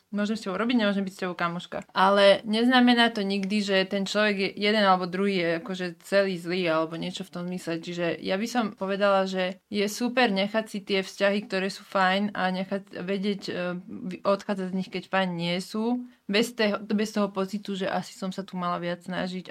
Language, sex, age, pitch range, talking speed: Slovak, female, 20-39, 180-205 Hz, 200 wpm